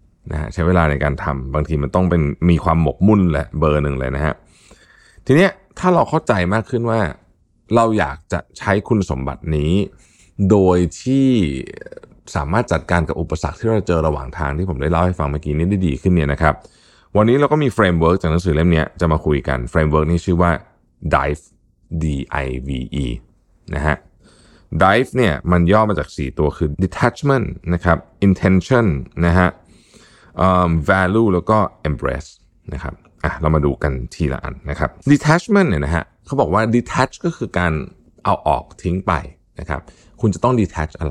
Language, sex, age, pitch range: Thai, male, 20-39, 75-105 Hz